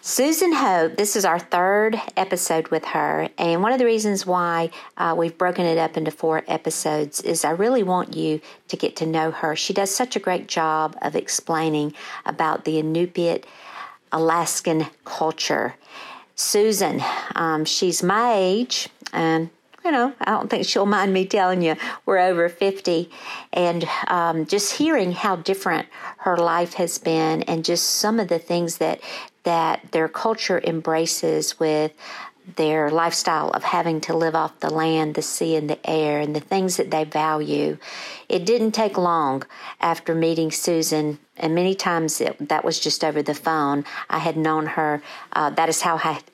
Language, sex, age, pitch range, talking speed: English, female, 50-69, 155-185 Hz, 170 wpm